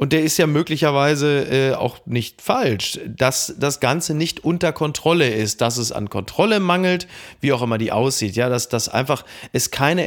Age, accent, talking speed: 30-49, German, 185 wpm